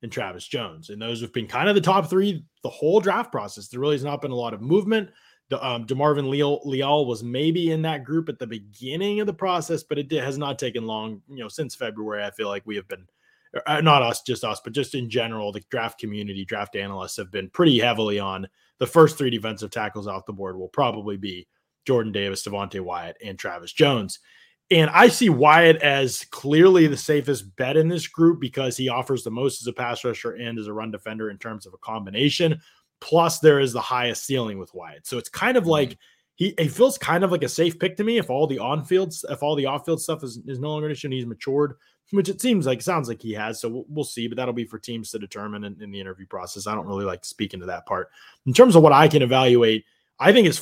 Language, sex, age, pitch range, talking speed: English, male, 20-39, 110-160 Hz, 245 wpm